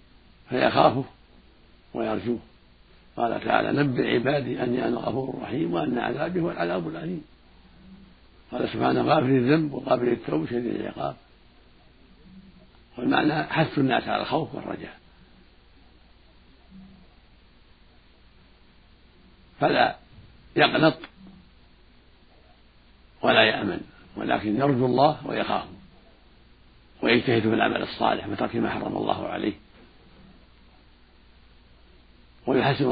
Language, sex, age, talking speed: Arabic, male, 60-79, 85 wpm